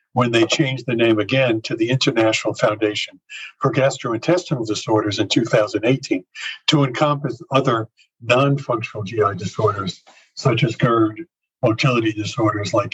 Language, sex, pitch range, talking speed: English, male, 115-145 Hz, 130 wpm